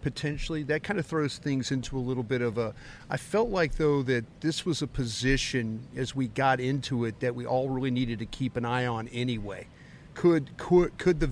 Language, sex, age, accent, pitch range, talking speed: English, male, 40-59, American, 125-150 Hz, 225 wpm